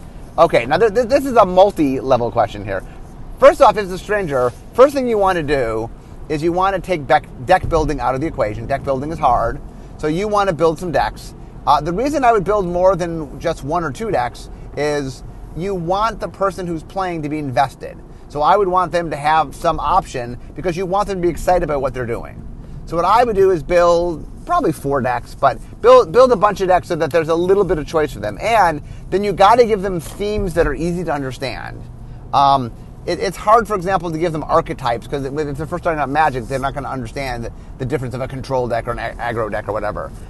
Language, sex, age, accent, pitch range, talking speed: English, male, 30-49, American, 135-185 Hz, 240 wpm